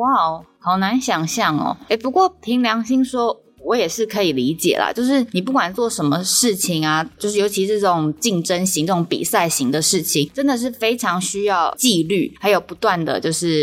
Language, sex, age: Chinese, female, 20-39